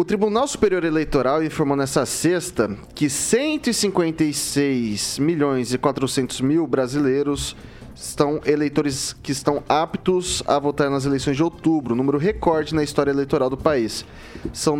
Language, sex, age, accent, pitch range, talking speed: Portuguese, male, 20-39, Brazilian, 130-165 Hz, 135 wpm